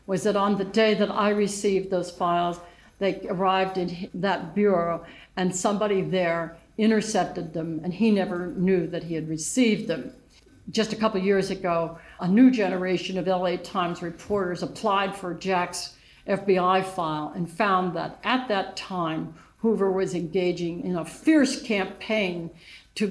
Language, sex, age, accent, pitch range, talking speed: English, female, 60-79, American, 170-195 Hz, 155 wpm